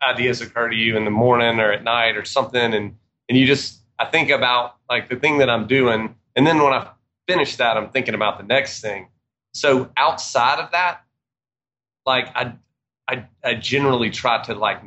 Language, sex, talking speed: English, male, 200 wpm